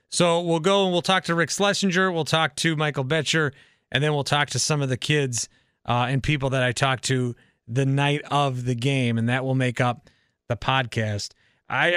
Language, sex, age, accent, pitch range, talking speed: English, male, 30-49, American, 130-165 Hz, 215 wpm